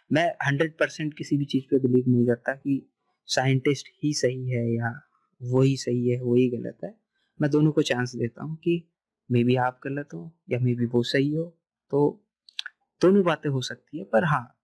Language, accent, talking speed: Hindi, native, 205 wpm